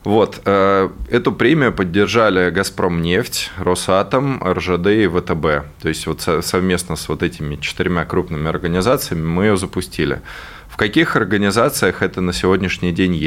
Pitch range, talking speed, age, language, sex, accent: 85-95 Hz, 125 wpm, 20-39, Russian, male, native